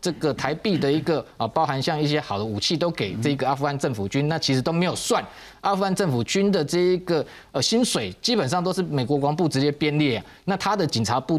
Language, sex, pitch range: Chinese, male, 125-165 Hz